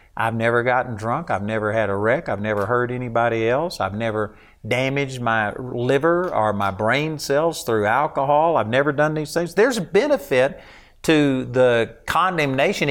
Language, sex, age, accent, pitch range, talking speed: English, male, 50-69, American, 115-160 Hz, 165 wpm